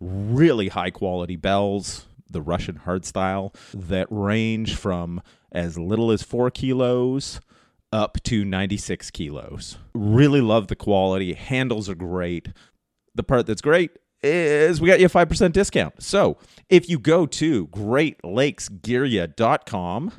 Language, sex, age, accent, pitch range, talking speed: English, male, 30-49, American, 90-130 Hz, 130 wpm